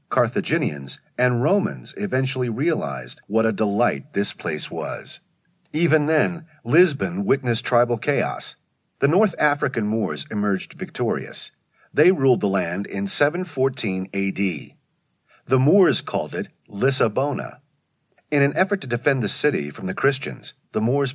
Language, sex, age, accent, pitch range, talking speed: English, male, 40-59, American, 110-150 Hz, 135 wpm